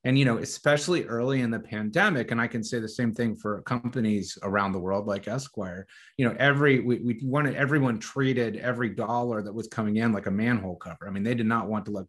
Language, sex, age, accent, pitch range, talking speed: English, male, 30-49, American, 110-135 Hz, 240 wpm